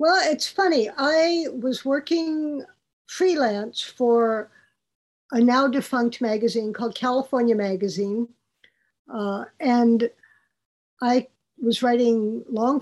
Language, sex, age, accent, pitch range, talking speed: English, female, 50-69, American, 210-255 Hz, 100 wpm